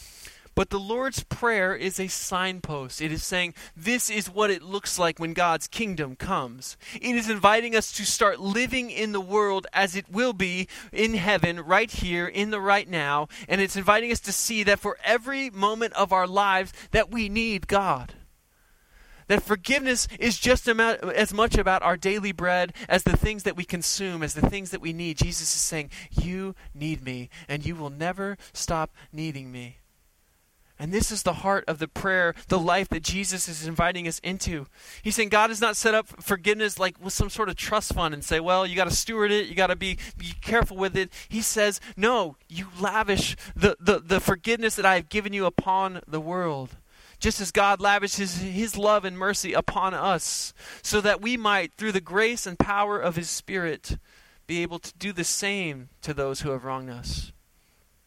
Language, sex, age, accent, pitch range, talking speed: English, male, 20-39, American, 165-210 Hz, 200 wpm